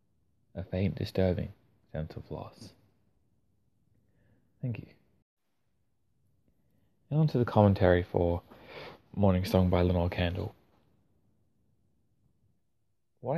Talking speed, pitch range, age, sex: 90 wpm, 95-115 Hz, 20-39, male